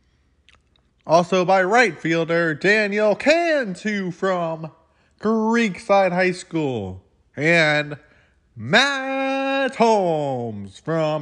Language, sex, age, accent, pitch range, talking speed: English, male, 20-39, American, 105-160 Hz, 75 wpm